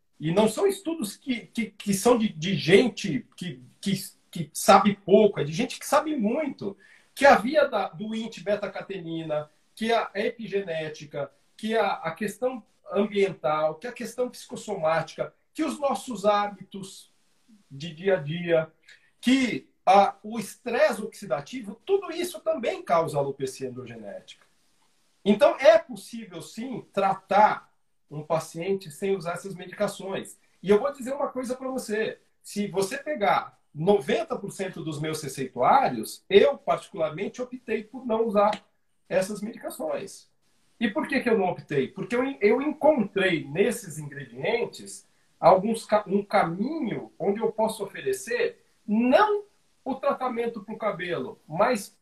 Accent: Brazilian